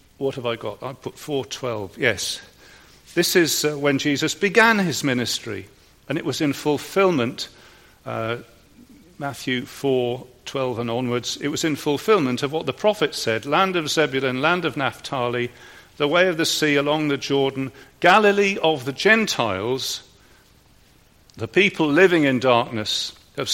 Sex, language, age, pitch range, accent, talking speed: male, English, 50-69, 115-155 Hz, British, 150 wpm